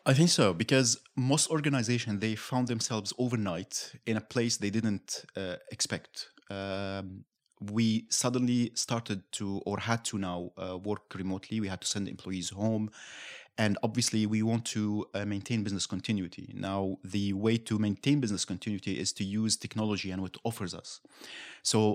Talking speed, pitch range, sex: 165 wpm, 100-115 Hz, male